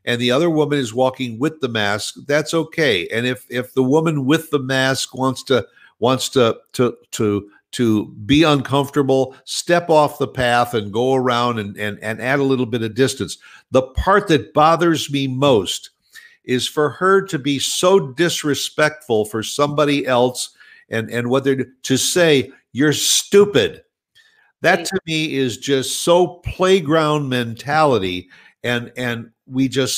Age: 50-69